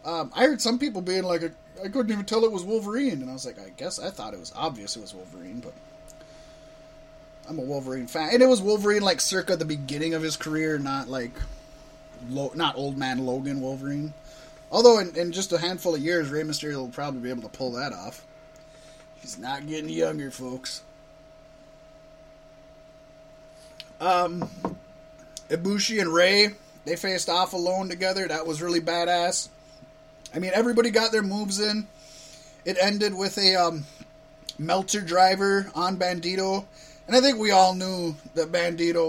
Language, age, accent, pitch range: English, 20-39, American, 140-175 Hz